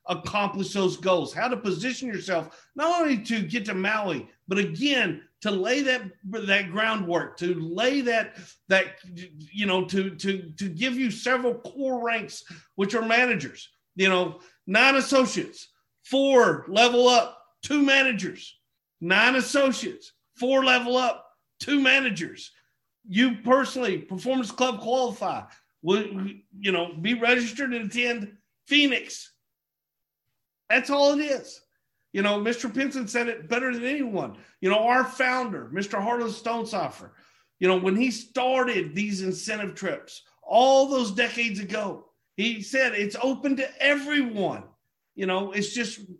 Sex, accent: male, American